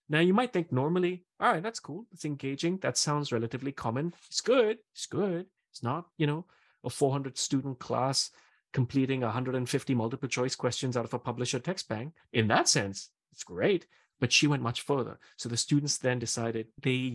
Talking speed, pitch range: 180 wpm, 115-145 Hz